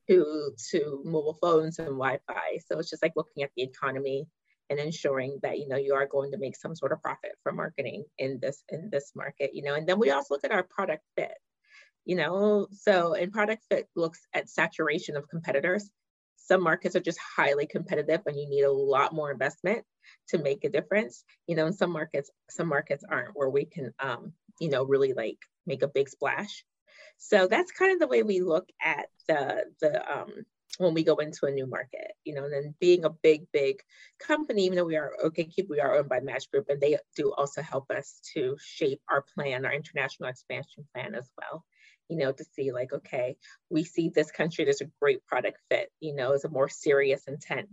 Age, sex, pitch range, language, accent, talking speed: 30-49, female, 140-190 Hz, English, American, 215 wpm